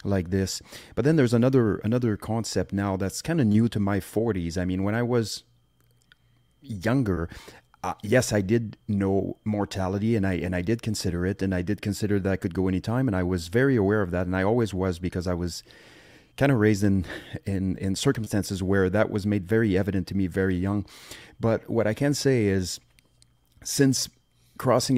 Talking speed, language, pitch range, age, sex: 195 wpm, English, 95-115 Hz, 30-49, male